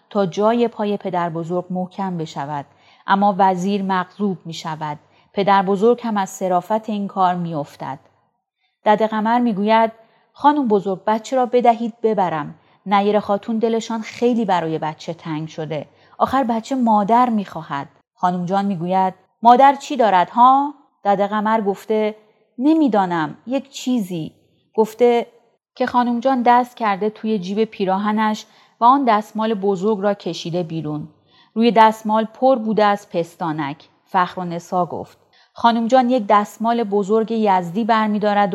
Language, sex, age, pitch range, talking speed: Persian, female, 30-49, 180-230 Hz, 130 wpm